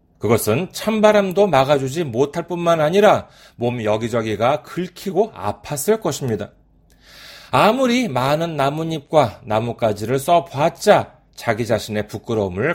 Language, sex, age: Korean, male, 40-59